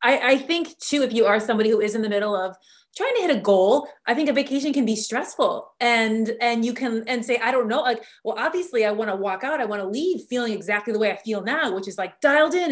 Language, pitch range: English, 210-265 Hz